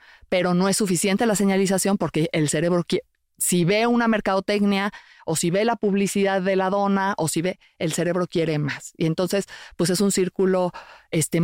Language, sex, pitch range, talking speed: Spanish, female, 170-210 Hz, 190 wpm